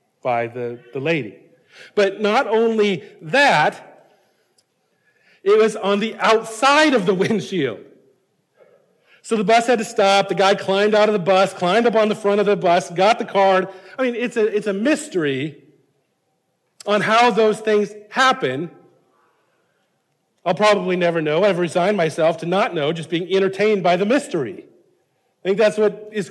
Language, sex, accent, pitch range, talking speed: English, male, American, 180-225 Hz, 165 wpm